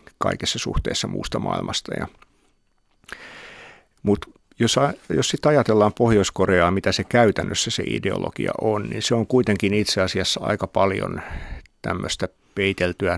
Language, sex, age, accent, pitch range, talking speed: Finnish, male, 50-69, native, 95-115 Hz, 120 wpm